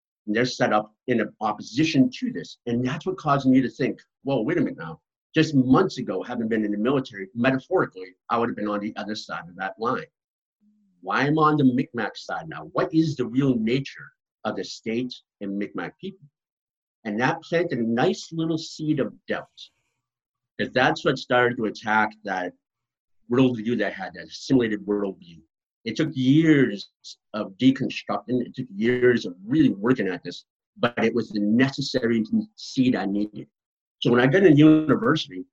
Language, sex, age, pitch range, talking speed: English, male, 50-69, 110-155 Hz, 185 wpm